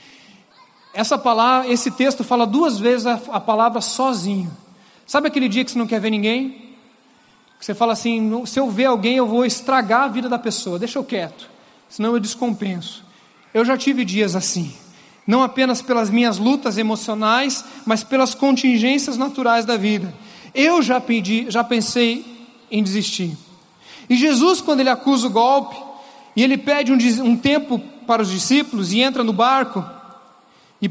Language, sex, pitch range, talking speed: Portuguese, male, 230-280 Hz, 160 wpm